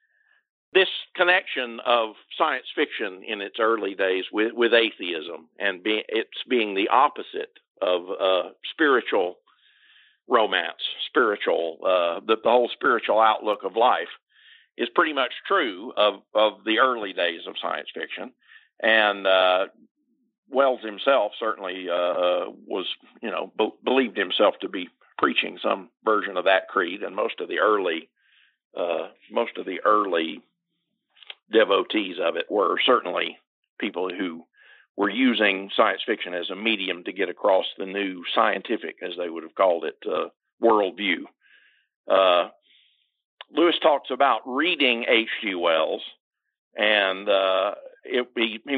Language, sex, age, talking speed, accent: English, male, 50-69, 140 wpm, American